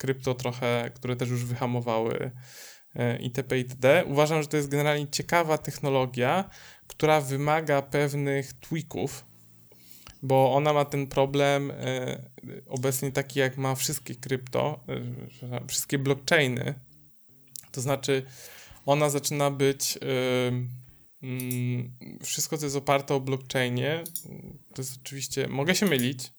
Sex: male